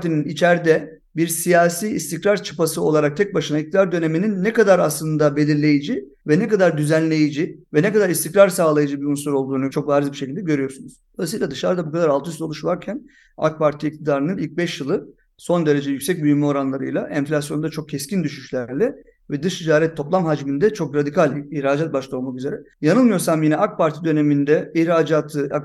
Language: Turkish